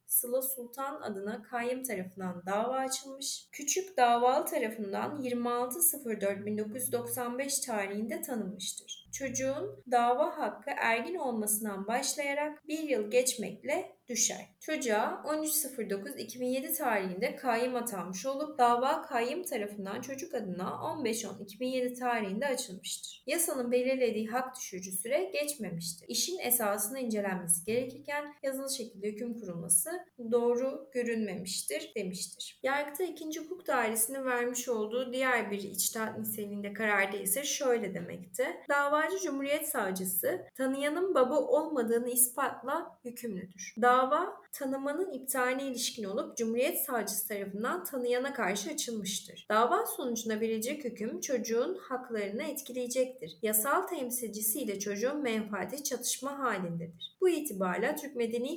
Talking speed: 110 wpm